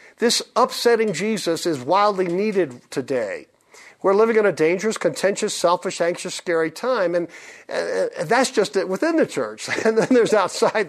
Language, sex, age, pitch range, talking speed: English, male, 50-69, 165-225 Hz, 160 wpm